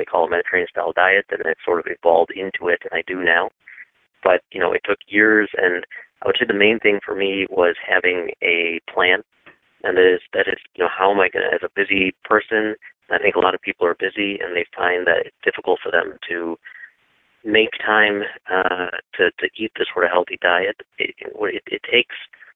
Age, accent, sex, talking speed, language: 30-49, American, male, 225 wpm, English